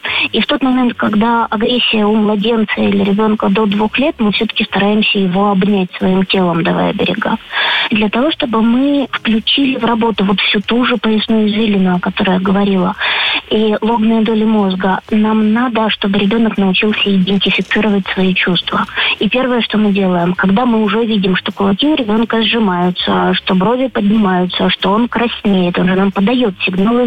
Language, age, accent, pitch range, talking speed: Ukrainian, 20-39, native, 195-230 Hz, 170 wpm